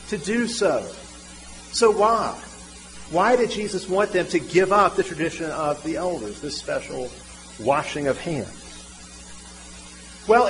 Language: English